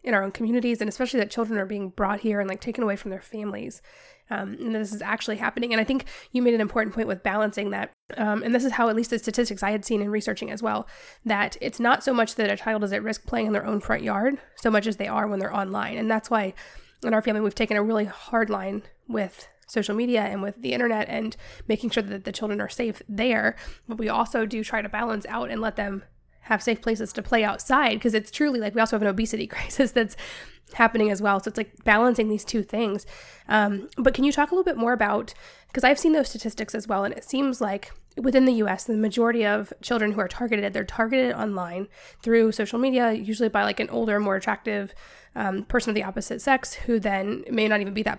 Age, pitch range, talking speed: 20-39, 210-235 Hz, 250 wpm